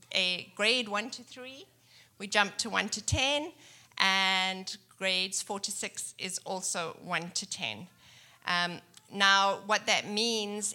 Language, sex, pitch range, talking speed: English, female, 175-205 Hz, 145 wpm